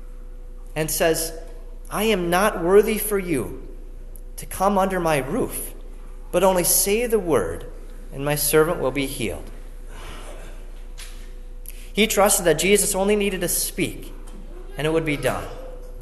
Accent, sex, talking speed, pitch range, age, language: American, male, 140 wpm, 125-185 Hz, 30-49, English